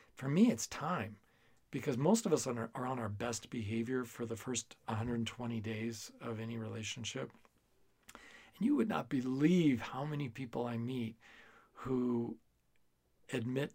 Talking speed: 150 wpm